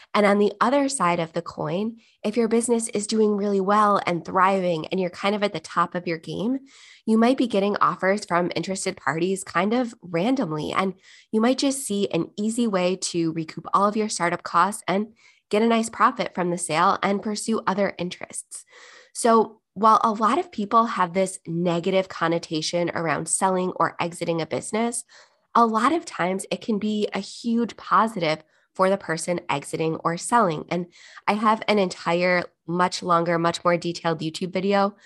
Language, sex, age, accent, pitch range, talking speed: English, female, 20-39, American, 170-215 Hz, 185 wpm